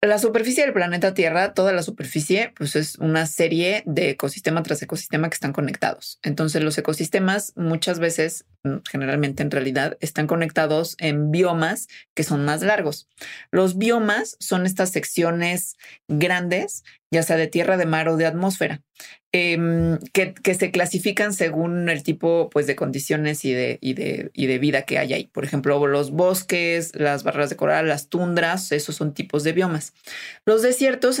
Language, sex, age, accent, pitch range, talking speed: Spanish, female, 20-39, Mexican, 155-190 Hz, 170 wpm